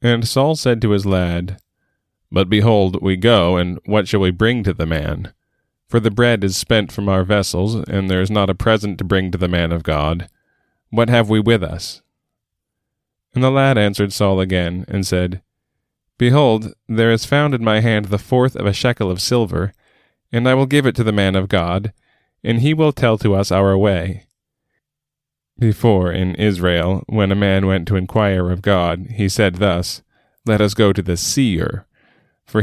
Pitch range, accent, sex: 90-115 Hz, American, male